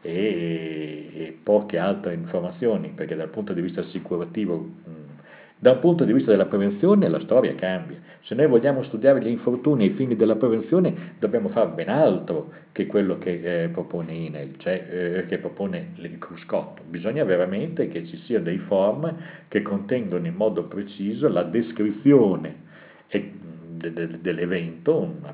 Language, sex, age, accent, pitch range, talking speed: Italian, male, 50-69, native, 85-140 Hz, 150 wpm